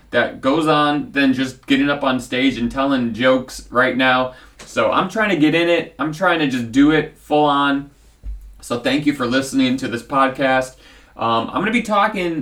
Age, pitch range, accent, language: 30-49, 135-215 Hz, American, English